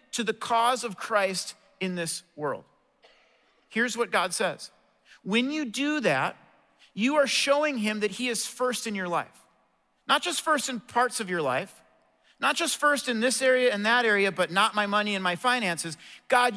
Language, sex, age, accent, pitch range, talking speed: English, male, 40-59, American, 190-255 Hz, 190 wpm